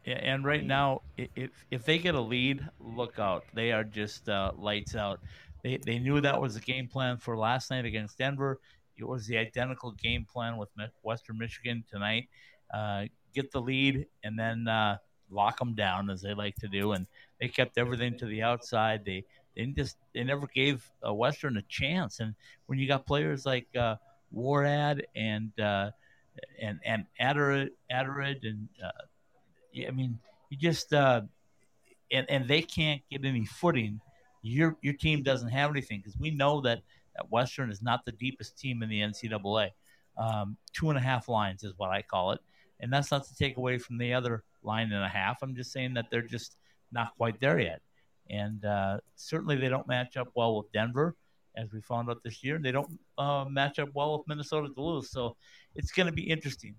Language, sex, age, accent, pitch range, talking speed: English, male, 50-69, American, 110-140 Hz, 195 wpm